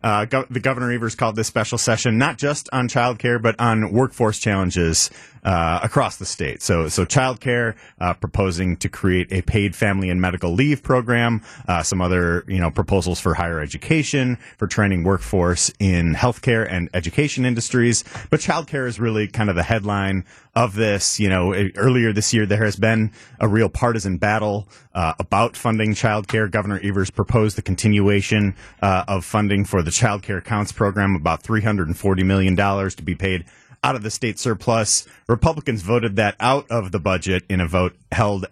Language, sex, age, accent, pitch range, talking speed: English, male, 30-49, American, 95-115 Hz, 190 wpm